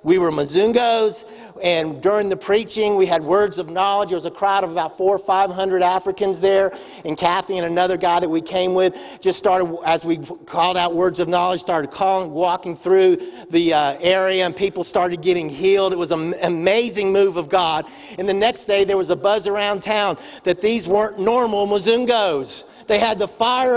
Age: 50-69